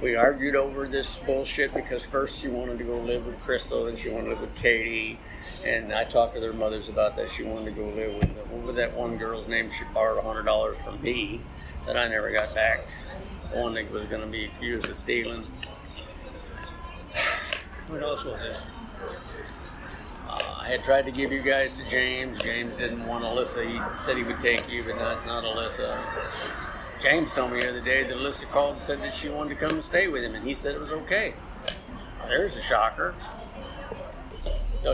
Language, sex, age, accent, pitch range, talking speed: English, male, 50-69, American, 90-135 Hz, 205 wpm